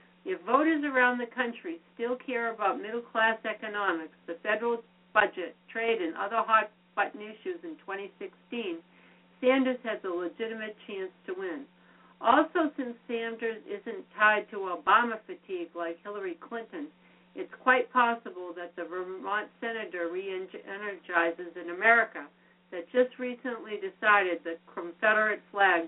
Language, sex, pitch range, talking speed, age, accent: English, female, 185-235 Hz, 130 wpm, 60-79, American